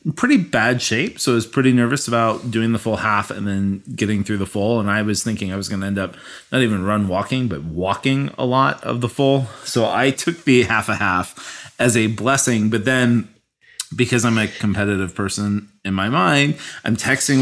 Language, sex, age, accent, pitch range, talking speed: English, male, 30-49, American, 105-135 Hz, 215 wpm